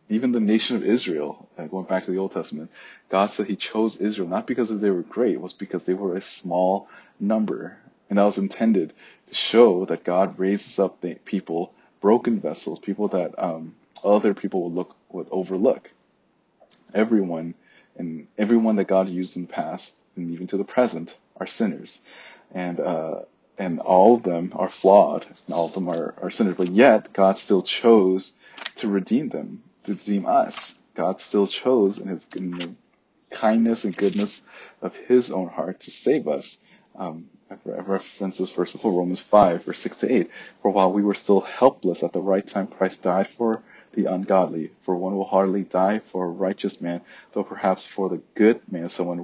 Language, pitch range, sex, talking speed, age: English, 90-105 Hz, male, 190 wpm, 30-49